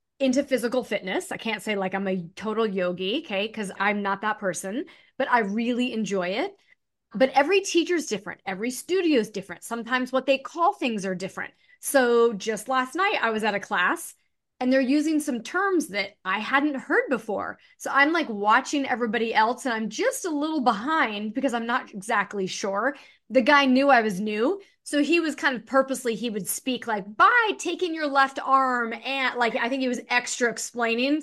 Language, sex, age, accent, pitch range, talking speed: English, female, 30-49, American, 210-280 Hz, 195 wpm